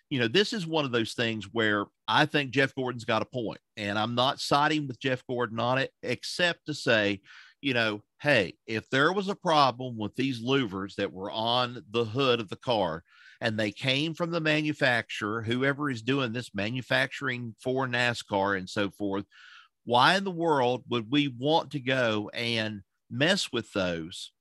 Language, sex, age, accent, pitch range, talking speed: English, male, 50-69, American, 115-150 Hz, 185 wpm